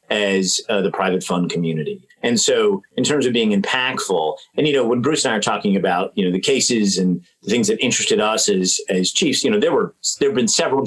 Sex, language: male, English